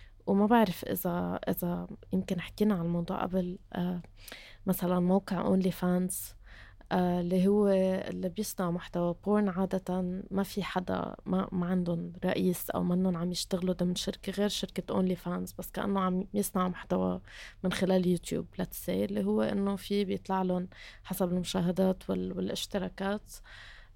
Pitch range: 170-195 Hz